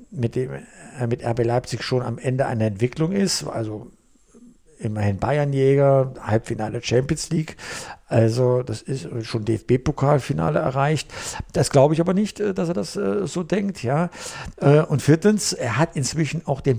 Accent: German